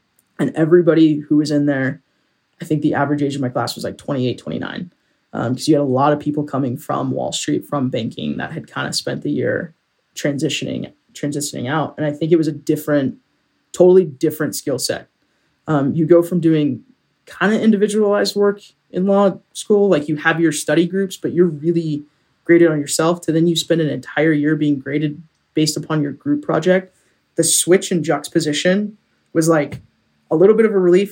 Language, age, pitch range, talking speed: English, 20-39, 145-170 Hz, 195 wpm